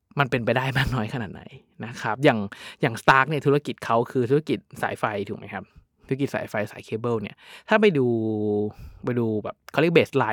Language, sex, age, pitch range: Thai, male, 20-39, 110-140 Hz